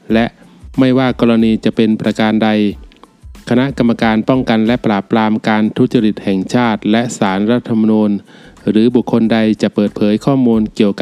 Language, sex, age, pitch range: Thai, male, 20-39, 110-125 Hz